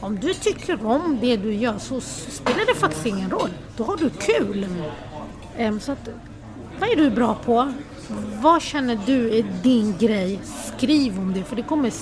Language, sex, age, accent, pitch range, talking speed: Swedish, female, 30-49, native, 215-285 Hz, 180 wpm